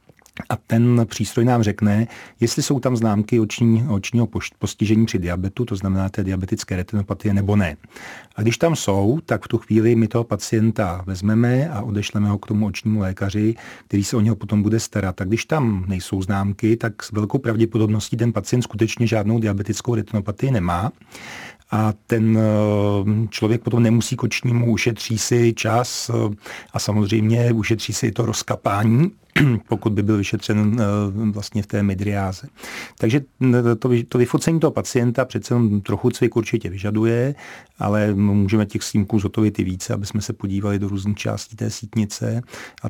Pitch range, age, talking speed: 100-115 Hz, 40-59, 160 wpm